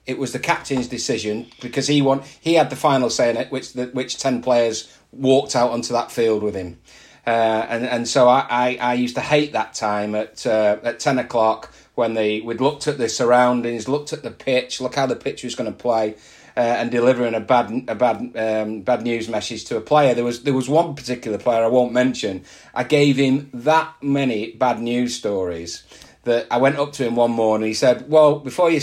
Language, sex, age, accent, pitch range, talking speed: English, male, 30-49, British, 115-145 Hz, 225 wpm